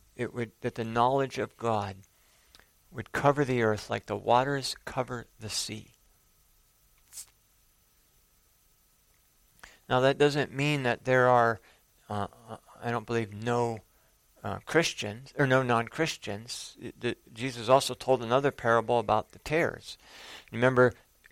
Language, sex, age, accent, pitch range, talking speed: English, male, 50-69, American, 110-135 Hz, 125 wpm